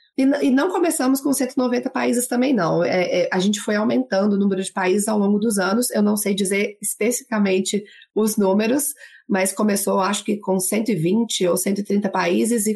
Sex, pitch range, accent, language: female, 190-235 Hz, Brazilian, Portuguese